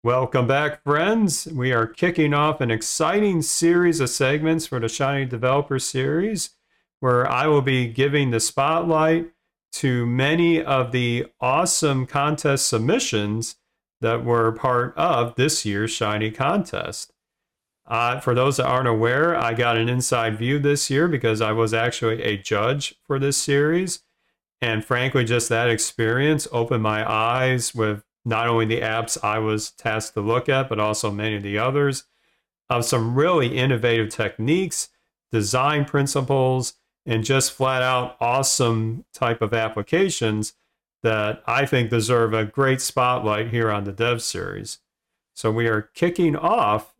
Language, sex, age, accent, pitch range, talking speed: English, male, 40-59, American, 115-145 Hz, 150 wpm